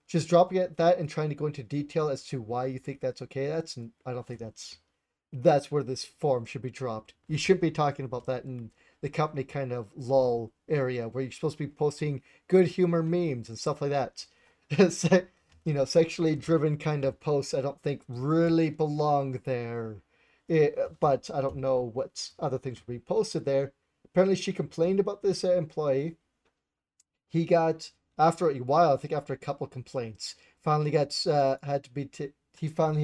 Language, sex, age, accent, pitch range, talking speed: English, male, 40-59, American, 135-165 Hz, 190 wpm